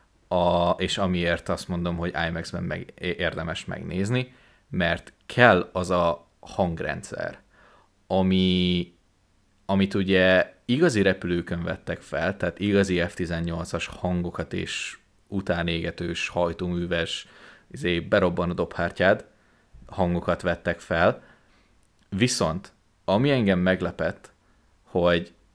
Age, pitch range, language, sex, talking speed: 30-49, 85-100 Hz, Hungarian, male, 95 wpm